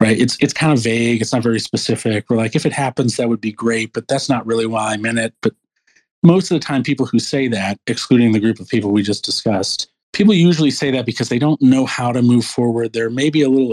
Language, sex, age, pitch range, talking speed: English, male, 40-59, 110-130 Hz, 260 wpm